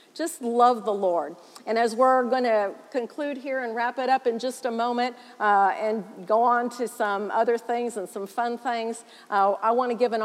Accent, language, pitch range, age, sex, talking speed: American, English, 200-240 Hz, 50-69, female, 215 wpm